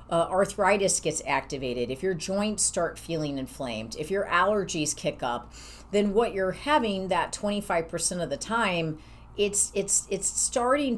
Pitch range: 155-205 Hz